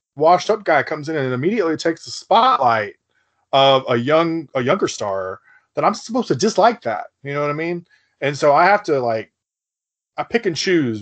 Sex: male